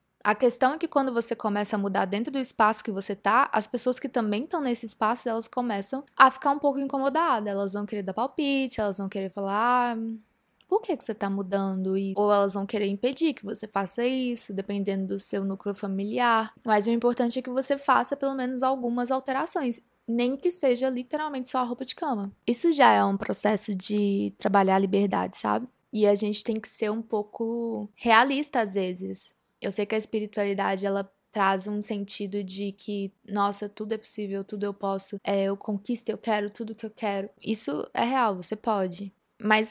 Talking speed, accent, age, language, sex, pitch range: 200 wpm, Brazilian, 10-29, Portuguese, female, 200-245 Hz